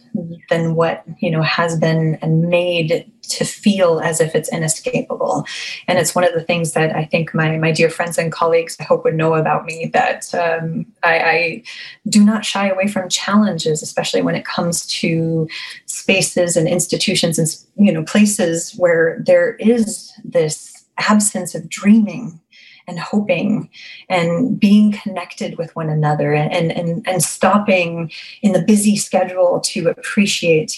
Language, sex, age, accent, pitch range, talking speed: English, female, 20-39, American, 165-215 Hz, 160 wpm